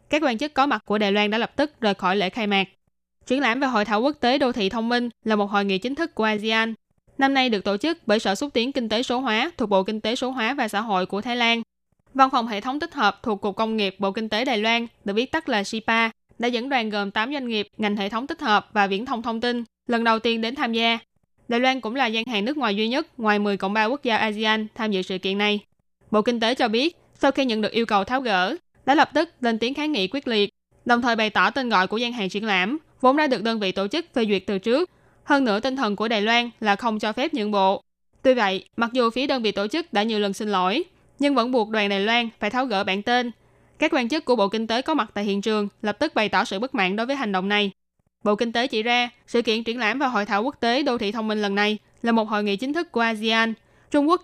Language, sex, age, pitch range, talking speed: Vietnamese, female, 10-29, 205-255 Hz, 290 wpm